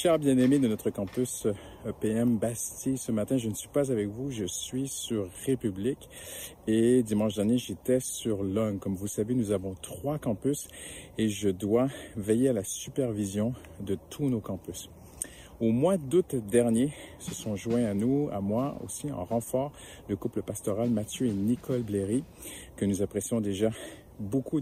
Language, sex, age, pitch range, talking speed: French, male, 50-69, 100-130 Hz, 165 wpm